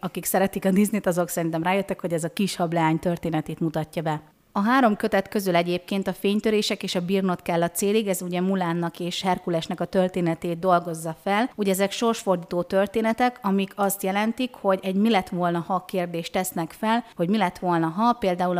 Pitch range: 170-205 Hz